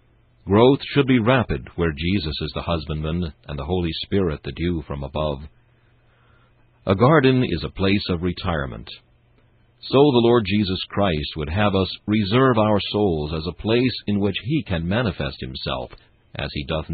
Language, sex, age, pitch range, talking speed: English, male, 60-79, 80-115 Hz, 165 wpm